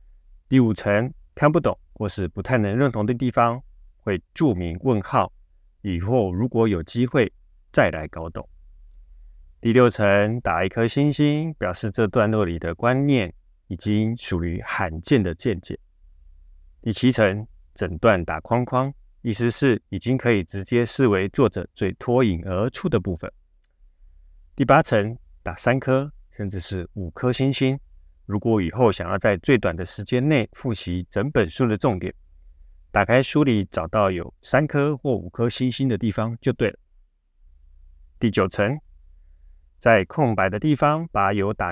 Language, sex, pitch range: Chinese, male, 80-125 Hz